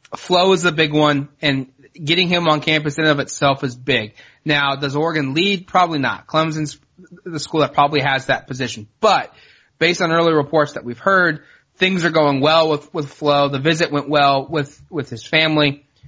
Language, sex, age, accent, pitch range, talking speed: English, male, 20-39, American, 135-155 Hz, 200 wpm